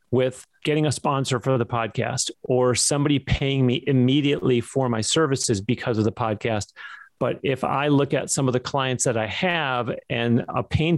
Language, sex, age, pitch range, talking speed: English, male, 40-59, 120-145 Hz, 185 wpm